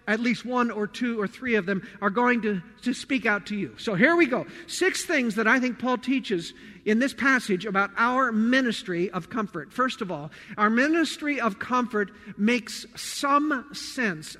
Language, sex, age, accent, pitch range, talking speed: English, male, 50-69, American, 190-245 Hz, 190 wpm